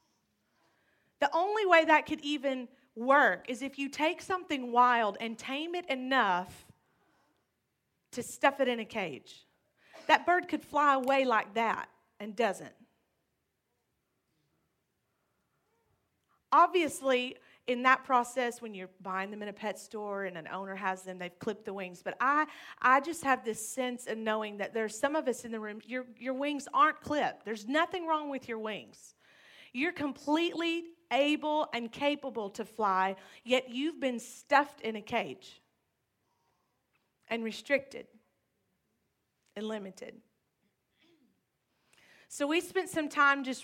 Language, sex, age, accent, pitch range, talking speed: English, female, 40-59, American, 210-275 Hz, 145 wpm